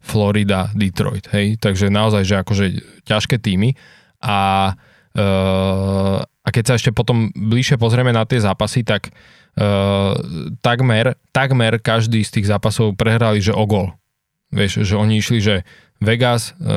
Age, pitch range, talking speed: 20-39, 105-120 Hz, 135 wpm